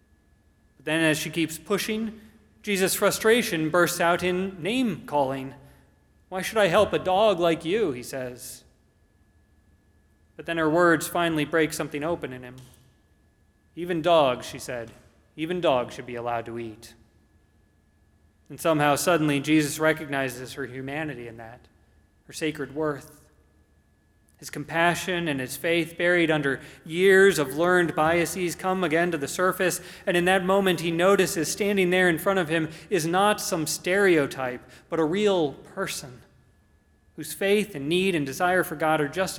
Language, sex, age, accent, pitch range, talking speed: English, male, 30-49, American, 110-175 Hz, 150 wpm